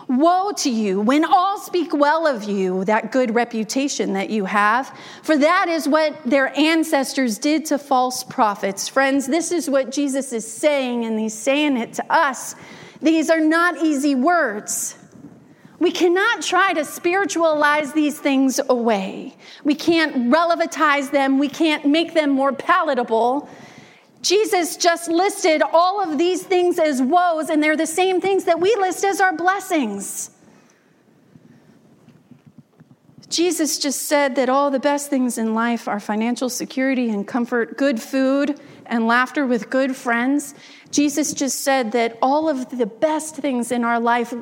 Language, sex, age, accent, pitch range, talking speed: English, female, 40-59, American, 240-315 Hz, 155 wpm